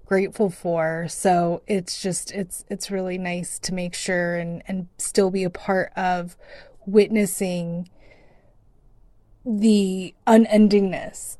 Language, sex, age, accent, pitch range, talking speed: English, female, 20-39, American, 185-225 Hz, 115 wpm